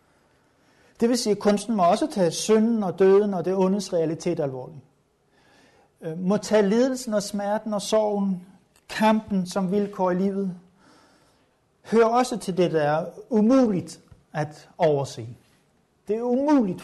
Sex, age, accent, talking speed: male, 60-79, native, 145 wpm